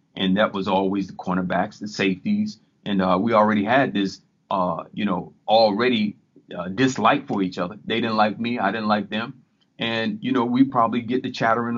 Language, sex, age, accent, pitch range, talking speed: English, male, 30-49, American, 105-130 Hz, 200 wpm